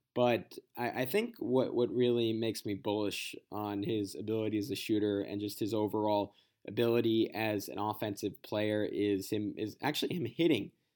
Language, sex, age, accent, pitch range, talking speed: English, male, 20-39, American, 105-120 Hz, 160 wpm